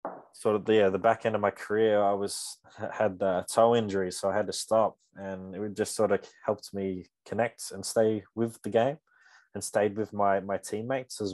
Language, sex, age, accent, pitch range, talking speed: English, male, 20-39, Australian, 95-110 Hz, 210 wpm